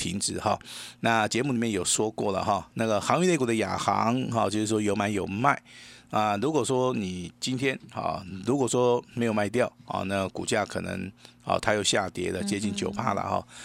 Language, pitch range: Chinese, 100-120 Hz